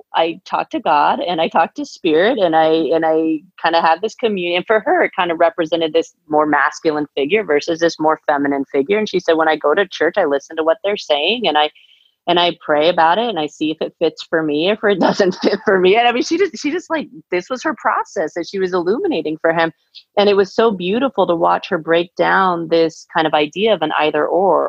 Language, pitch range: English, 155-205 Hz